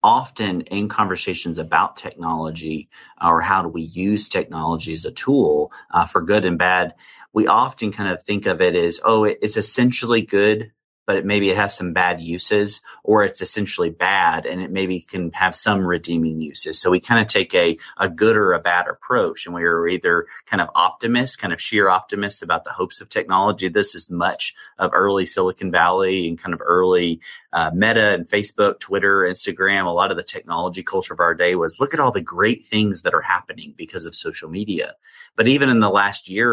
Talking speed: 205 wpm